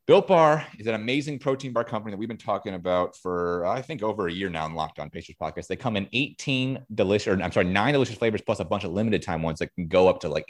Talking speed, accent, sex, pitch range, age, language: 280 wpm, American, male, 90-115 Hz, 30-49, English